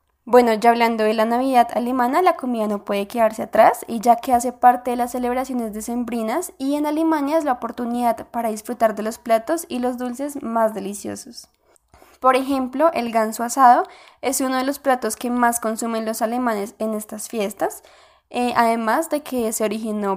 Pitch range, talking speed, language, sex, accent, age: 220-265 Hz, 185 wpm, Spanish, female, Colombian, 10-29